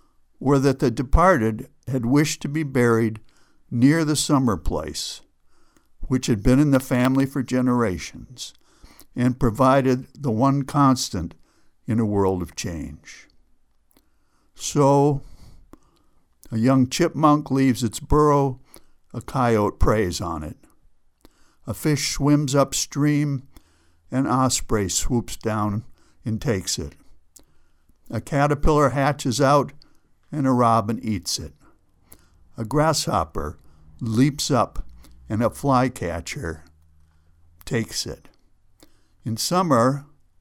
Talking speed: 110 wpm